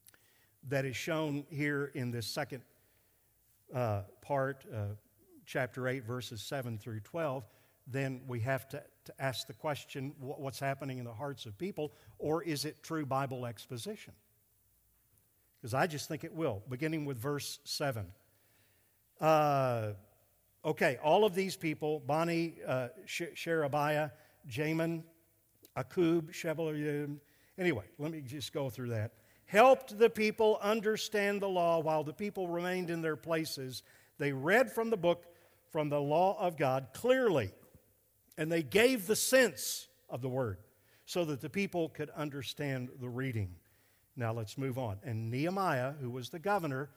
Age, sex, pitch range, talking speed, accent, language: 50-69, male, 120-165 Hz, 145 wpm, American, English